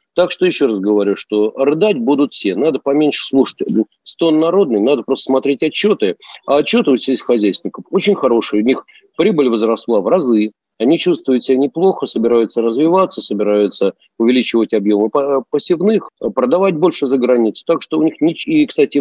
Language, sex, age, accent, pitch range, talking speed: Russian, male, 50-69, native, 115-175 Hz, 160 wpm